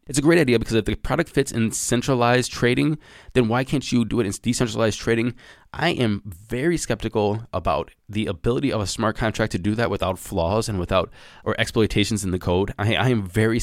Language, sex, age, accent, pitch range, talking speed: English, male, 20-39, American, 100-125 Hz, 210 wpm